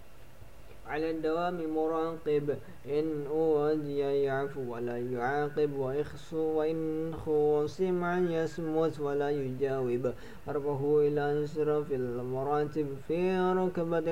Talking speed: 95 wpm